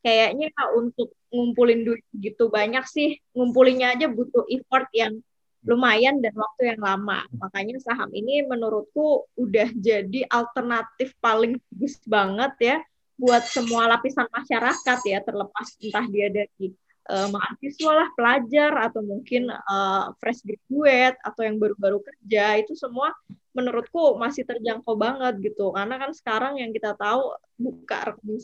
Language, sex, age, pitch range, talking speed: Indonesian, female, 20-39, 215-255 Hz, 135 wpm